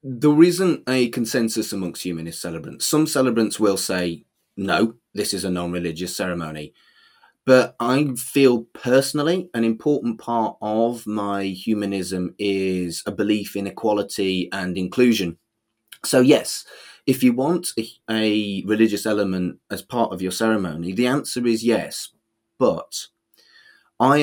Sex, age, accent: male, 30-49, British